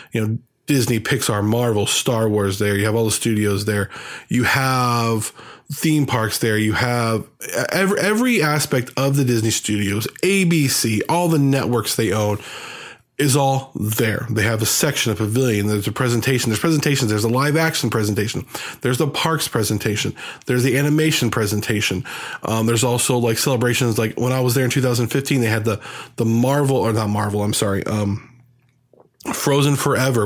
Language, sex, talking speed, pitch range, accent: English, male, 170 wpm, 110-135 Hz, American